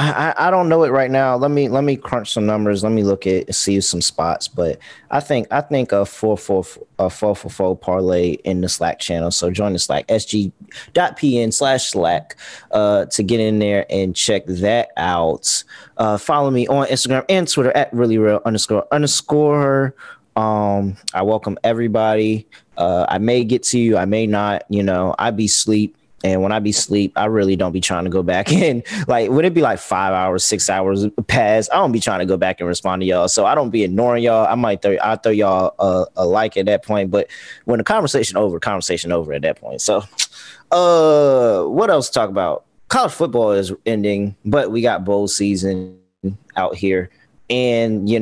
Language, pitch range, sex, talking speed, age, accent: English, 95-120 Hz, male, 210 wpm, 20-39, American